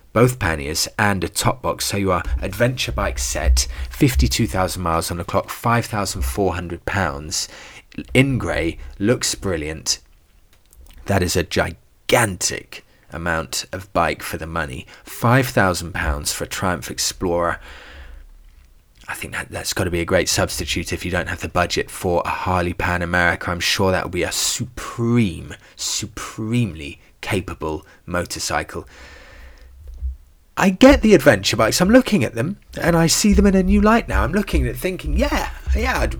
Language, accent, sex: English, British, male